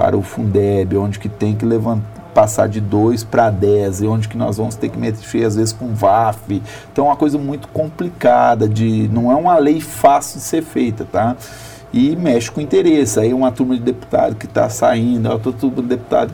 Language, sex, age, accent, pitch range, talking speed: Portuguese, male, 40-59, Brazilian, 110-125 Hz, 210 wpm